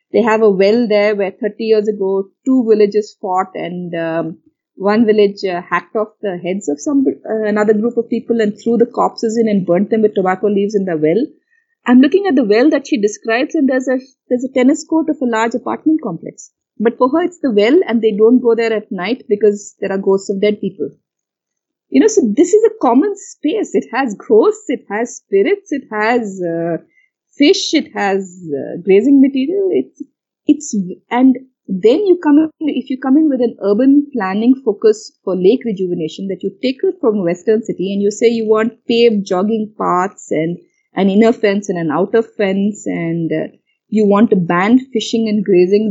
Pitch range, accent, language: 195-265 Hz, Indian, English